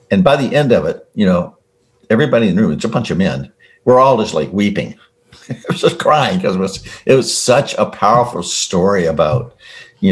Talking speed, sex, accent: 220 wpm, male, American